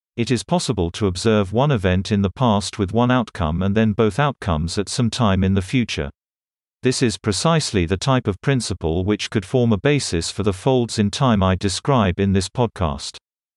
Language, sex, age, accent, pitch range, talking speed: English, male, 50-69, British, 95-120 Hz, 200 wpm